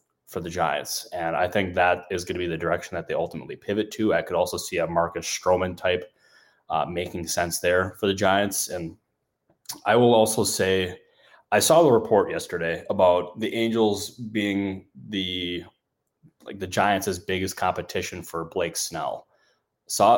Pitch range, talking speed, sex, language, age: 90-110 Hz, 175 wpm, male, English, 20-39